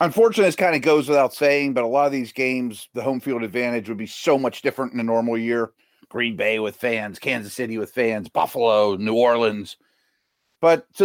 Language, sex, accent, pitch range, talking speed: English, male, American, 115-155 Hz, 210 wpm